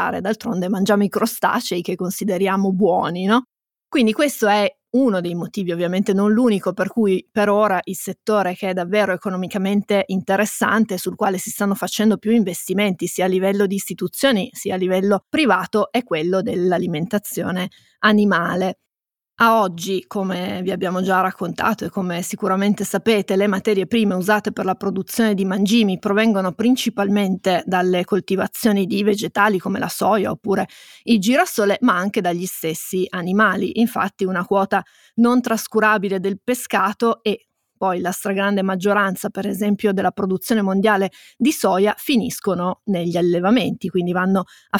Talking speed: 145 wpm